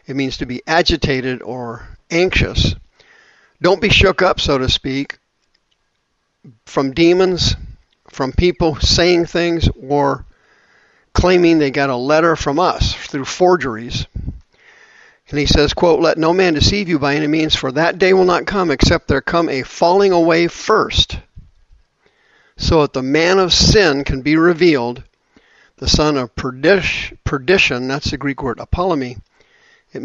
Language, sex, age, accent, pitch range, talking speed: English, male, 50-69, American, 130-170 Hz, 150 wpm